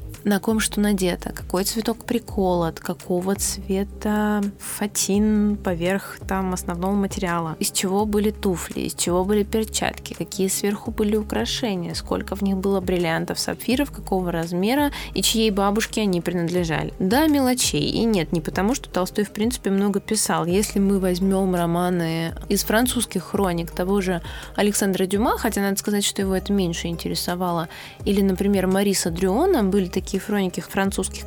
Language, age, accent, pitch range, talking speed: Russian, 20-39, native, 180-215 Hz, 150 wpm